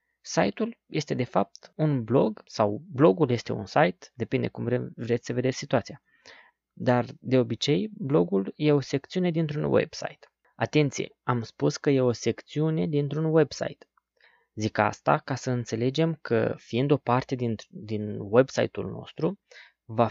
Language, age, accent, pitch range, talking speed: Romanian, 20-39, native, 110-140 Hz, 145 wpm